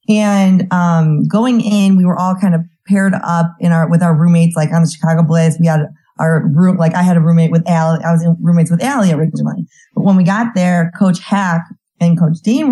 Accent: American